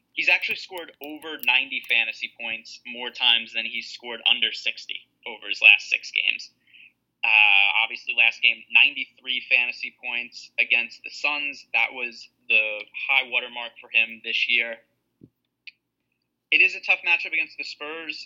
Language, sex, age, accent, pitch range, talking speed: English, male, 20-39, American, 120-140 Hz, 150 wpm